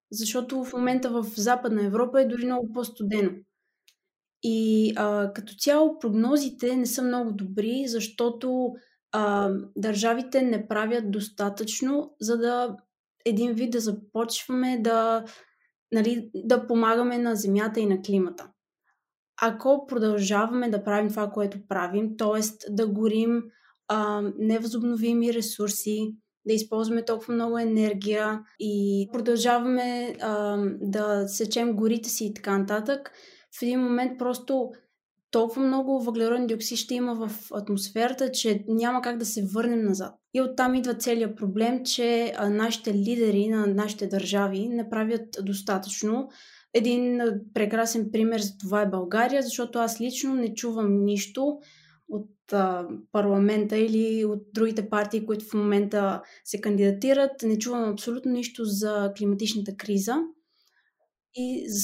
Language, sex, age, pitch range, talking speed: Bulgarian, female, 20-39, 210-245 Hz, 125 wpm